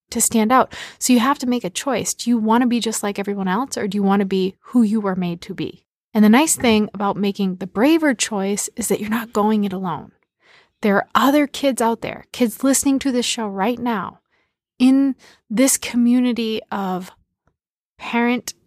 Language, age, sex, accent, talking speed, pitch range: English, 20-39, female, American, 210 wpm, 195-240 Hz